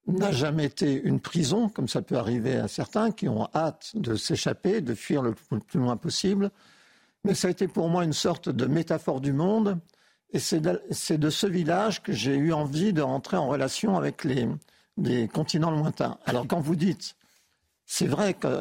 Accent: French